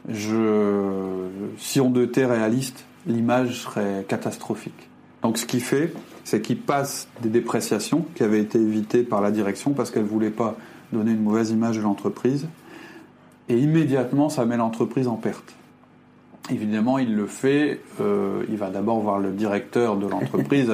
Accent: French